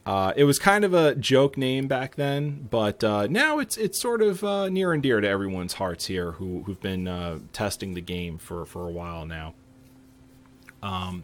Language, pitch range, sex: English, 95-125 Hz, male